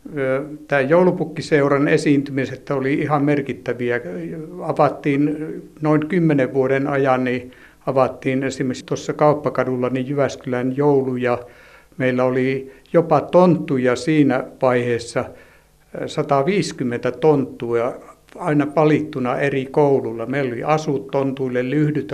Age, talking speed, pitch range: 60-79, 100 wpm, 125-150 Hz